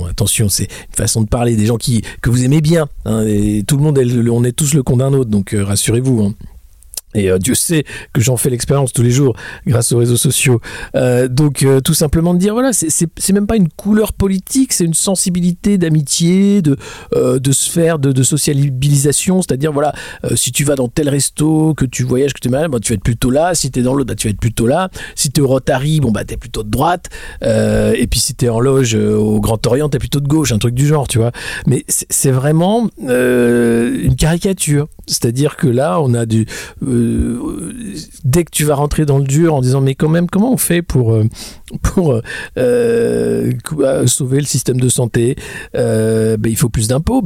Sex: male